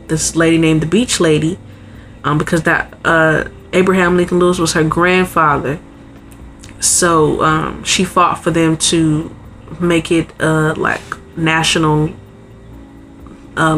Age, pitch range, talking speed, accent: 20-39, 155-190 Hz, 125 wpm, American